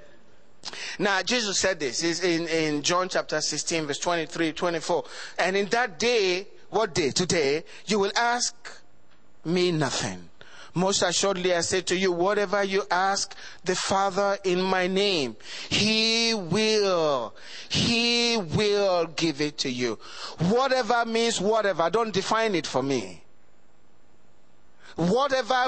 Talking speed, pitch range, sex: 130 wpm, 155-225 Hz, male